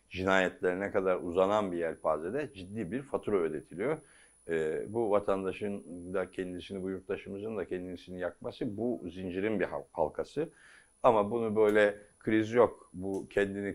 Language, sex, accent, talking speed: Turkish, male, native, 125 wpm